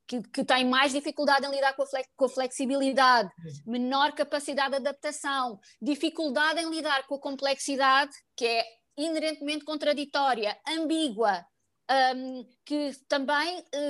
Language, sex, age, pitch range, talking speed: Portuguese, female, 20-39, 265-320 Hz, 110 wpm